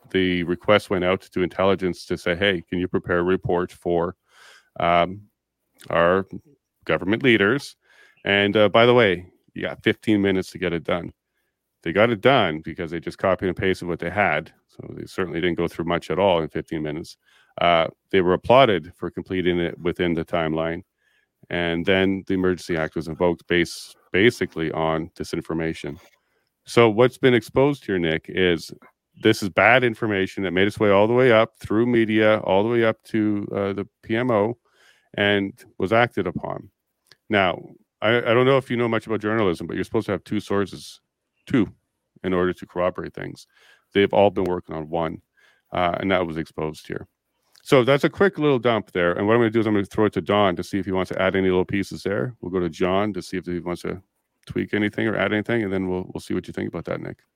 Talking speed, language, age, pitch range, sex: 215 wpm, English, 40-59, 90-105 Hz, male